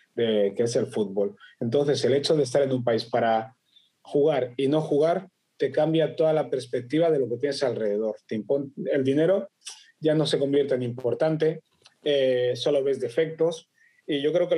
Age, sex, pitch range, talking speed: 30-49, male, 130-175 Hz, 185 wpm